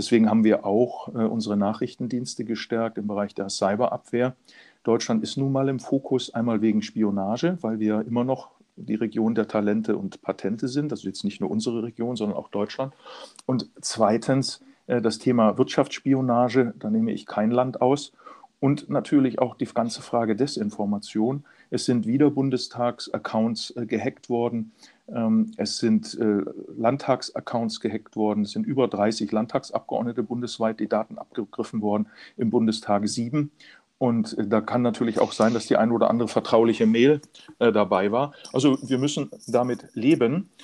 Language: German